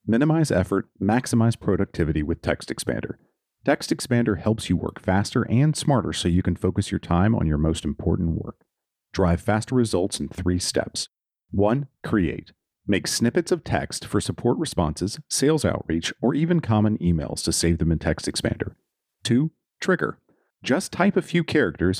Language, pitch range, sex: English, 90-125 Hz, male